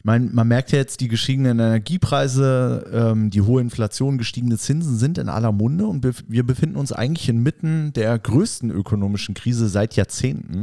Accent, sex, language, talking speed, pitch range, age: German, male, German, 160 wpm, 105-135 Hz, 30-49